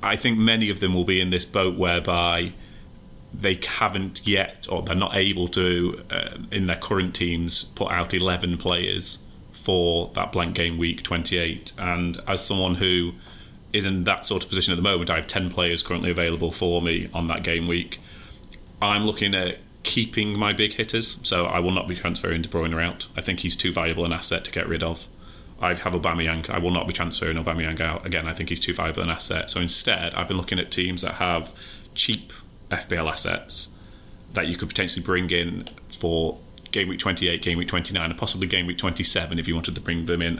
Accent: British